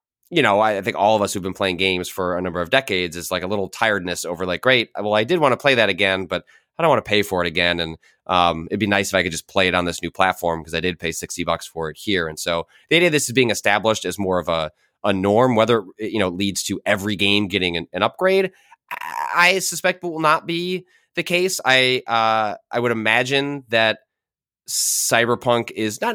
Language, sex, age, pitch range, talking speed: English, male, 30-49, 90-120 Hz, 250 wpm